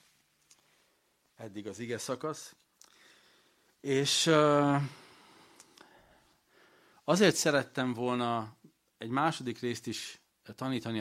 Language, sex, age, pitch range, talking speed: Hungarian, male, 40-59, 100-130 Hz, 75 wpm